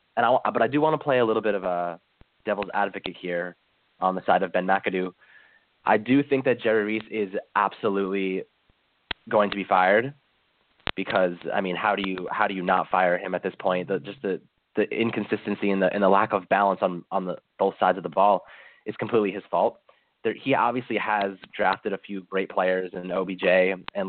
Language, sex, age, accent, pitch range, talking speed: English, male, 20-39, American, 95-120 Hz, 210 wpm